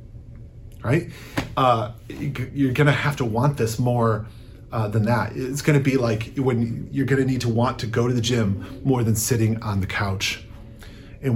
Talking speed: 195 wpm